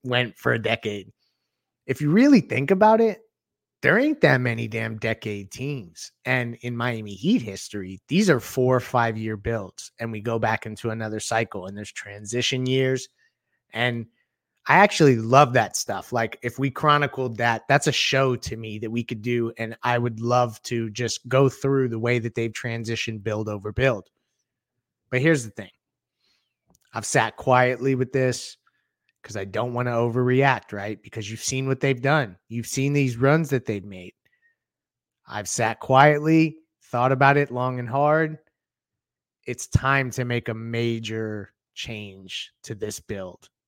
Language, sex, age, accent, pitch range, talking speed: English, male, 30-49, American, 115-140 Hz, 170 wpm